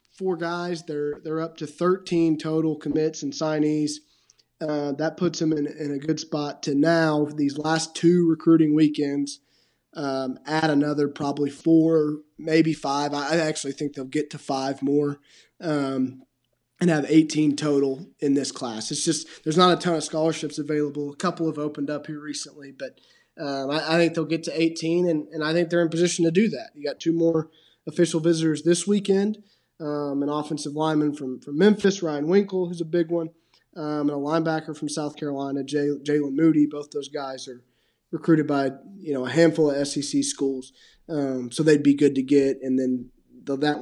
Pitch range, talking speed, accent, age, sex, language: 140-165 Hz, 190 wpm, American, 20-39, male, English